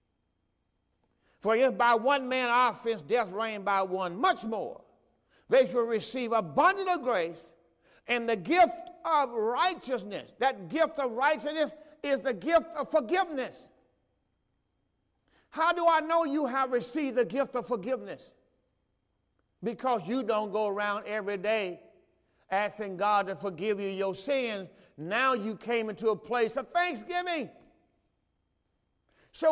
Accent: American